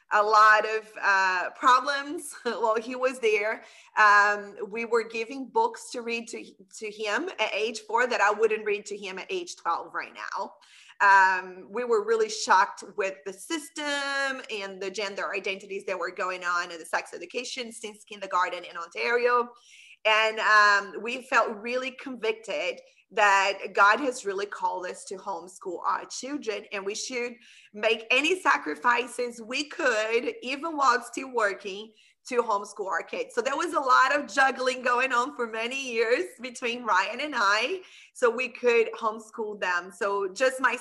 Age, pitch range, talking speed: 30-49, 205-265 Hz, 165 wpm